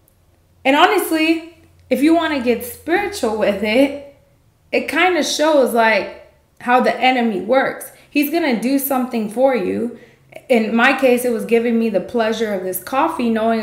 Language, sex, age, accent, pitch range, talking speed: English, female, 20-39, American, 210-280 Hz, 165 wpm